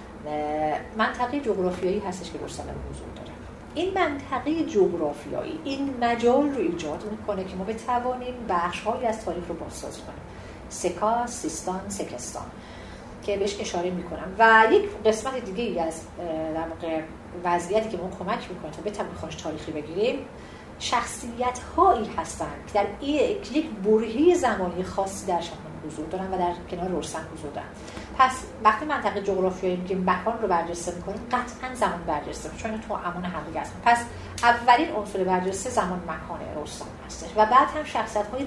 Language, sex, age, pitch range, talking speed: Persian, female, 40-59, 180-240 Hz, 160 wpm